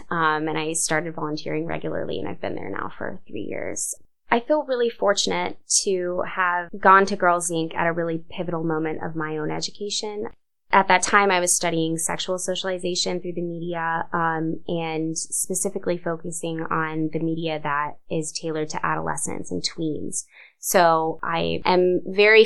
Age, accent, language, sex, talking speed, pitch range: 20-39, American, English, female, 165 wpm, 160-190 Hz